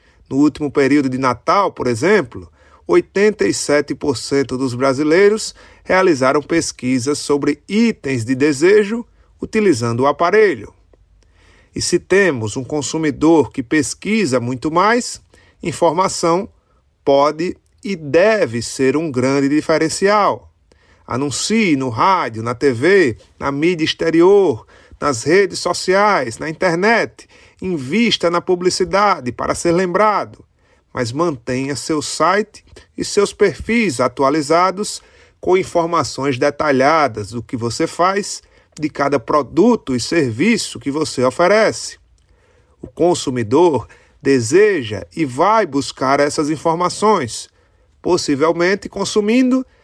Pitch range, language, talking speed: 135-195 Hz, Portuguese, 105 wpm